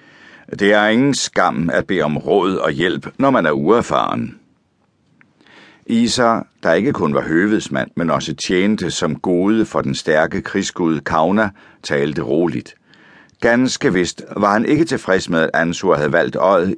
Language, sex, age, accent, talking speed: Danish, male, 60-79, native, 155 wpm